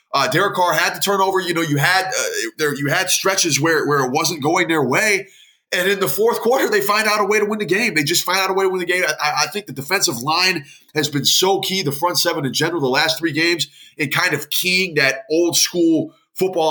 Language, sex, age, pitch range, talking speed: English, male, 20-39, 140-170 Hz, 265 wpm